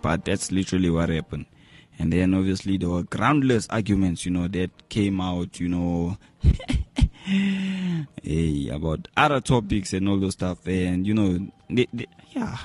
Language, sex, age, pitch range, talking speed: English, male, 20-39, 90-120 Hz, 155 wpm